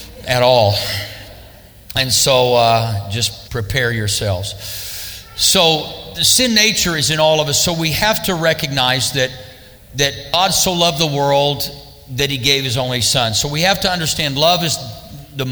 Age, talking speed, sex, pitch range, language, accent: 50-69, 165 wpm, male, 115-155 Hz, English, American